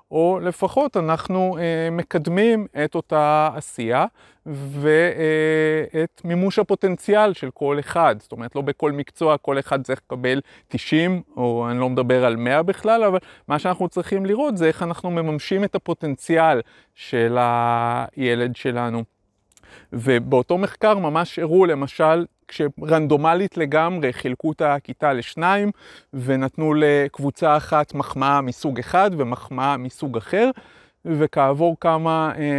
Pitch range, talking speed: 135-170 Hz, 120 wpm